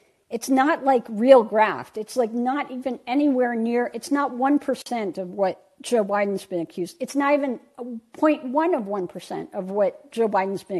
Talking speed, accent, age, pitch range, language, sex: 170 wpm, American, 50-69, 205-285 Hz, English, female